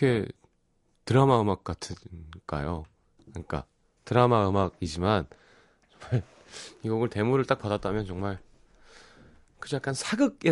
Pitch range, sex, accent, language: 90-130 Hz, male, native, Korean